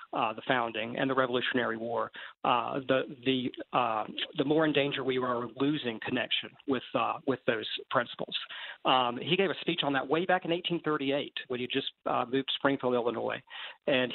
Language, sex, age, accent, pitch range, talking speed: English, male, 40-59, American, 125-145 Hz, 185 wpm